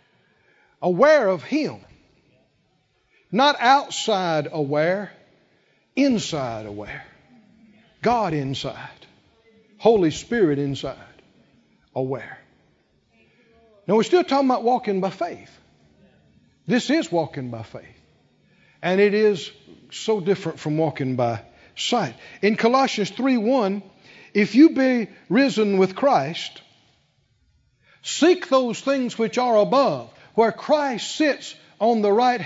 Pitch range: 190-270 Hz